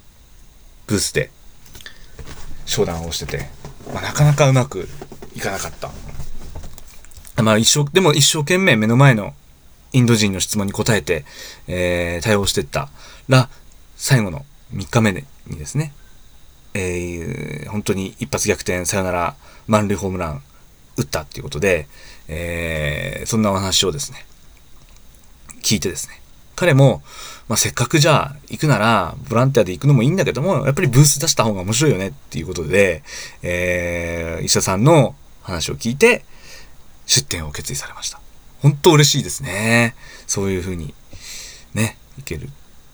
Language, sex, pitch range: Japanese, male, 85-130 Hz